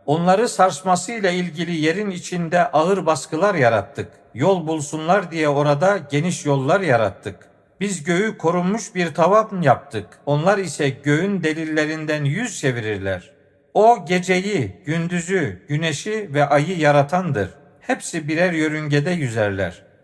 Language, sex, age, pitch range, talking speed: Turkish, male, 50-69, 140-185 Hz, 115 wpm